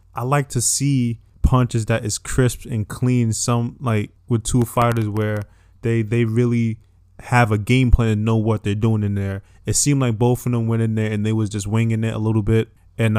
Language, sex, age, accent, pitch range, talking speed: English, male, 20-39, American, 105-120 Hz, 225 wpm